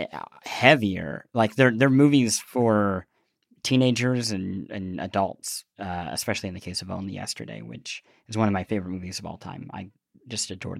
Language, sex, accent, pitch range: English, male, American, 105-130 Hz